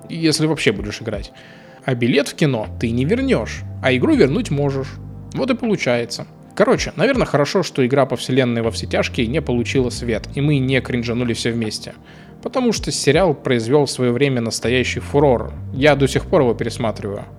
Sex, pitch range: male, 120-155 Hz